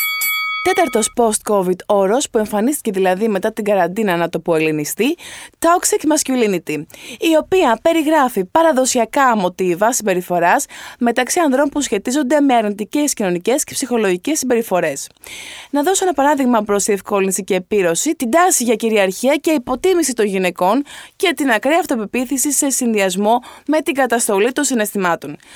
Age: 20-39